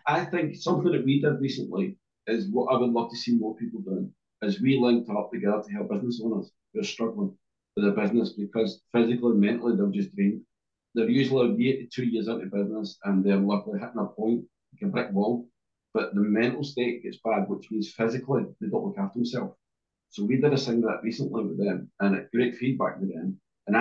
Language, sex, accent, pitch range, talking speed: English, male, British, 110-135 Hz, 220 wpm